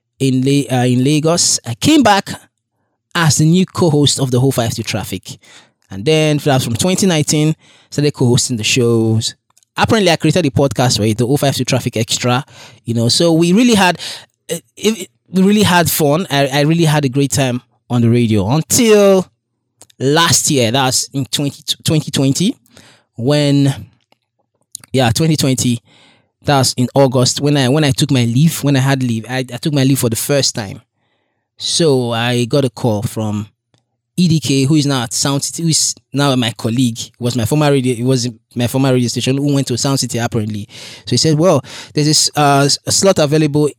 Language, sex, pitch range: English, male, 115-145 Hz